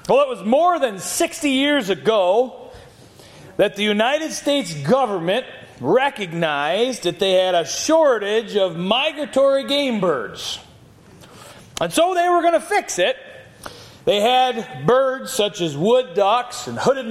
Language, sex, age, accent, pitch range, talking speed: English, male, 40-59, American, 200-270 Hz, 140 wpm